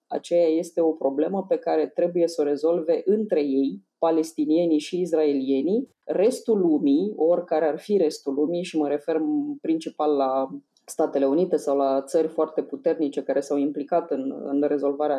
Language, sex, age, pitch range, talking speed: Romanian, female, 20-39, 150-185 Hz, 160 wpm